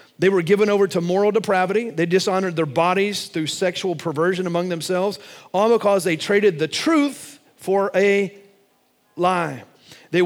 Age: 40-59